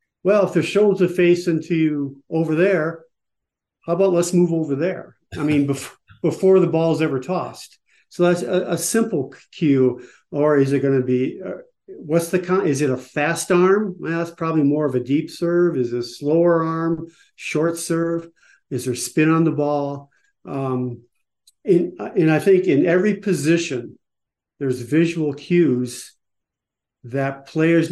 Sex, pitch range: male, 135-170 Hz